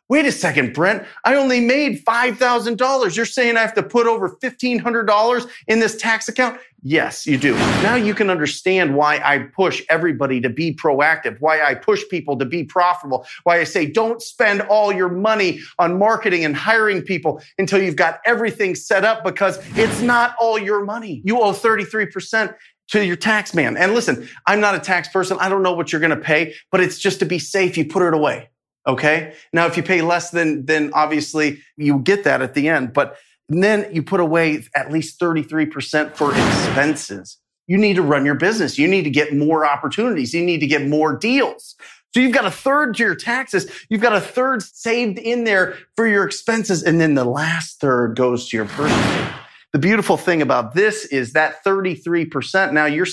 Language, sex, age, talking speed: English, male, 30-49, 200 wpm